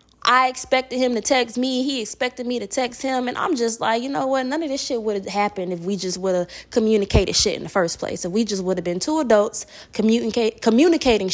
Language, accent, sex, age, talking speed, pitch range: English, American, female, 20-39, 245 wpm, 185-255 Hz